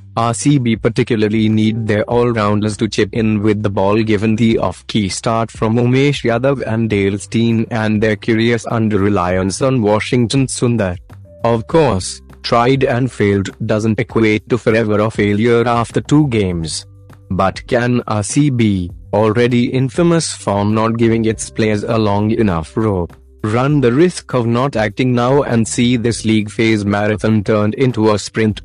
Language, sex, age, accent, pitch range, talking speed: Hindi, male, 30-49, native, 105-120 Hz, 155 wpm